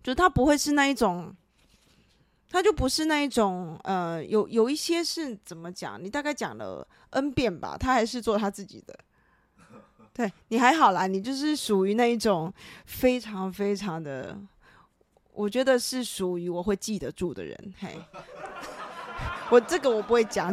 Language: Chinese